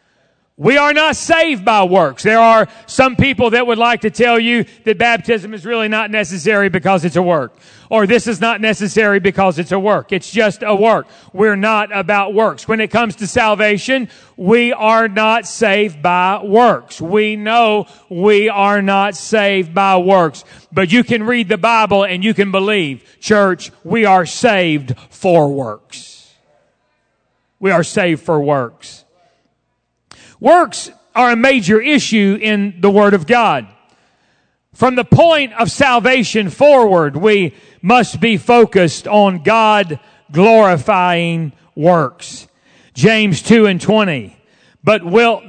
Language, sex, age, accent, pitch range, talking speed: English, male, 40-59, American, 190-230 Hz, 150 wpm